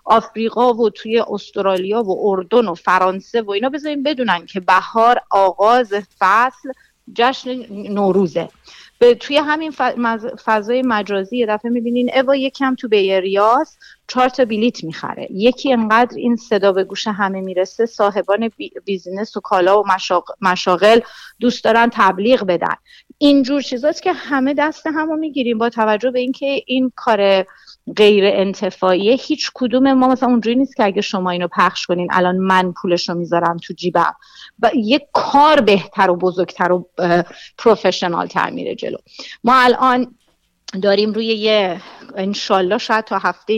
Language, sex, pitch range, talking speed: Persian, female, 190-250 Hz, 145 wpm